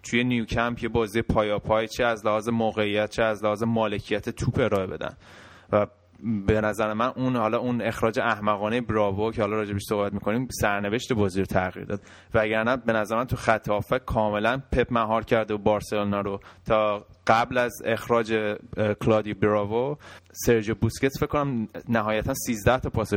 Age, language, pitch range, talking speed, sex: 20-39, Persian, 105-120 Hz, 170 wpm, male